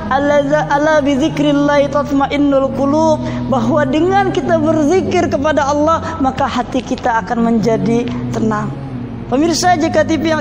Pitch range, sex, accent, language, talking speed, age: 270-310 Hz, female, native, Indonesian, 100 wpm, 20-39